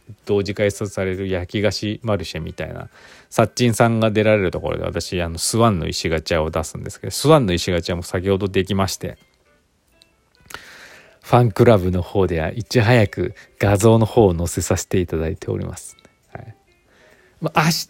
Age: 40-59